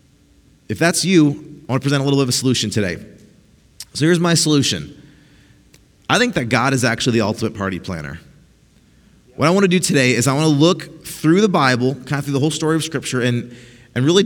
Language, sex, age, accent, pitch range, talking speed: English, male, 30-49, American, 115-155 Hz, 225 wpm